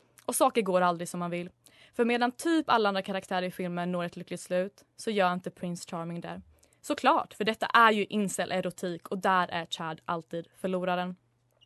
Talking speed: 195 wpm